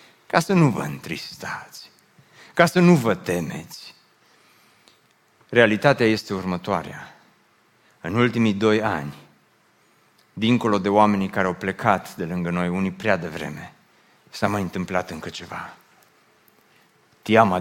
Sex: male